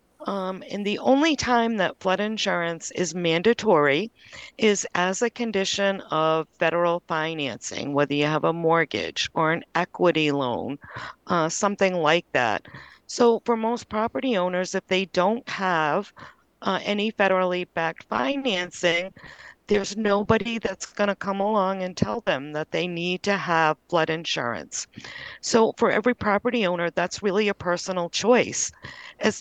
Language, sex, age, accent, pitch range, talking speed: English, female, 40-59, American, 165-205 Hz, 145 wpm